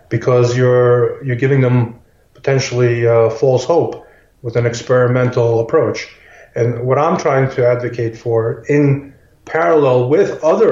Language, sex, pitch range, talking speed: English, male, 120-140 Hz, 135 wpm